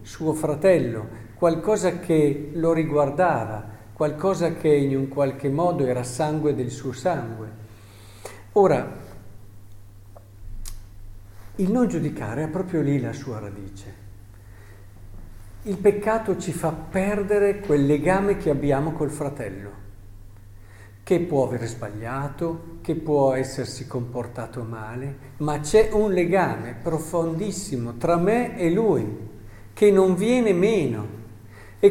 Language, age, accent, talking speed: Italian, 50-69, native, 115 wpm